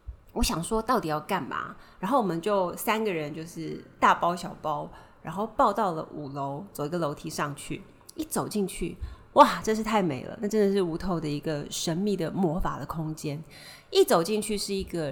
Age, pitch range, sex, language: 30-49, 160-215 Hz, female, Chinese